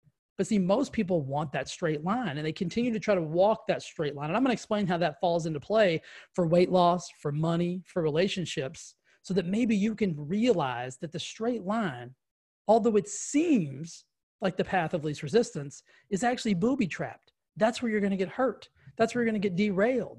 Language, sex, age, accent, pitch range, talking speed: English, male, 30-49, American, 165-215 Hz, 215 wpm